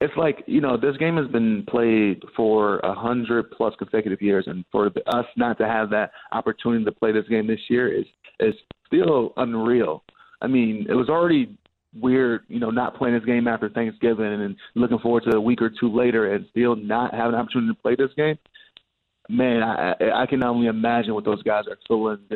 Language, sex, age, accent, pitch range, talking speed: English, male, 30-49, American, 110-125 Hz, 200 wpm